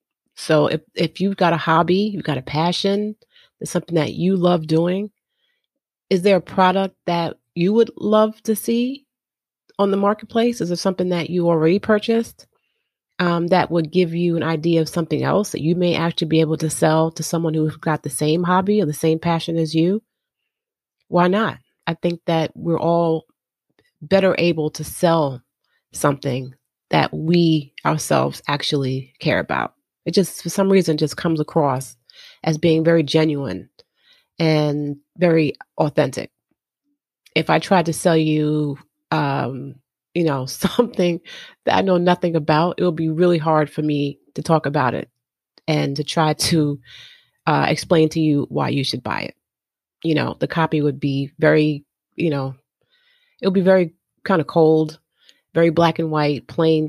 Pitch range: 150-185 Hz